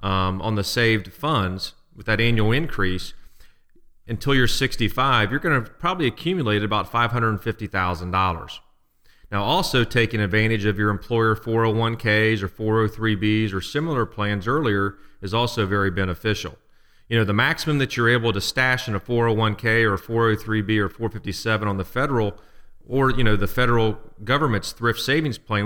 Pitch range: 100-120 Hz